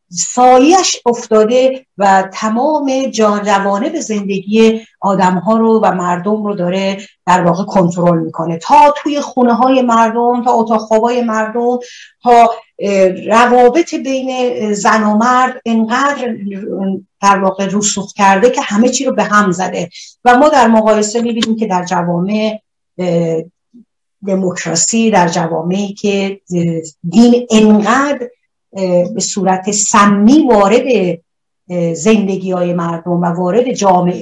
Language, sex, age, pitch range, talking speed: Persian, female, 50-69, 180-240 Hz, 120 wpm